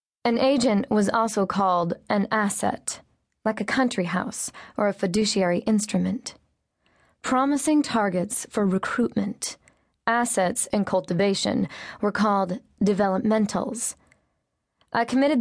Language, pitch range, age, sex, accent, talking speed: English, 185-235 Hz, 20-39, female, American, 105 wpm